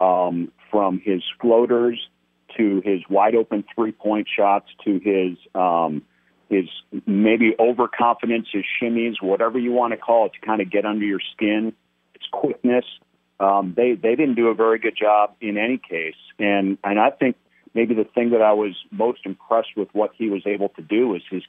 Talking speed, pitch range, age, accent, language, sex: 180 wpm, 95-115 Hz, 40-59, American, English, male